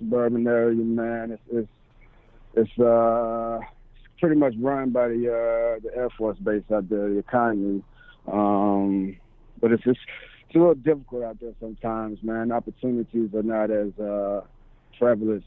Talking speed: 150 wpm